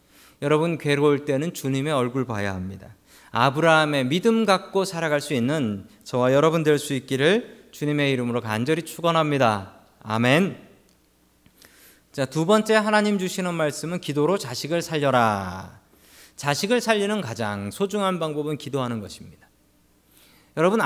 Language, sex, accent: Korean, male, native